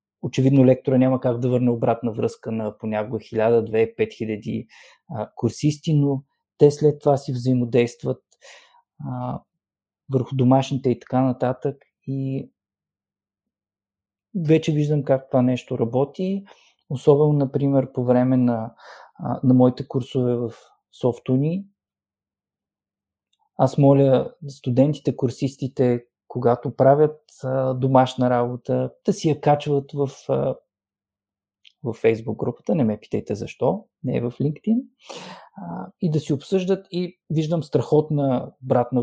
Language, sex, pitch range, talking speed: Bulgarian, male, 115-145 Hz, 110 wpm